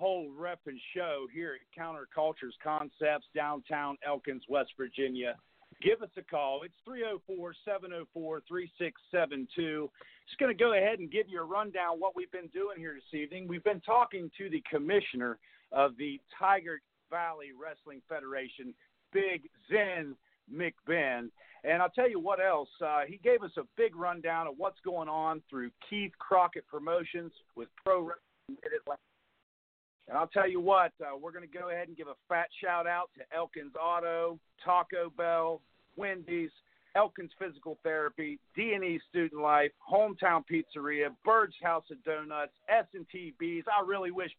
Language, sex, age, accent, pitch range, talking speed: English, male, 50-69, American, 155-190 Hz, 160 wpm